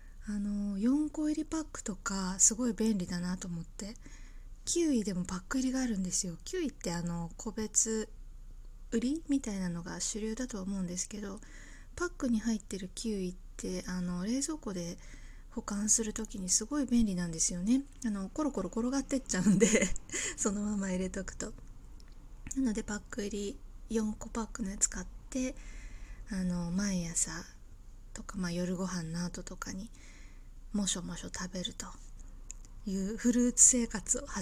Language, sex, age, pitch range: Japanese, female, 20-39, 180-230 Hz